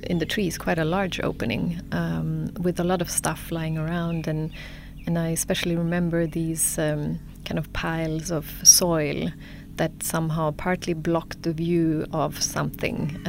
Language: English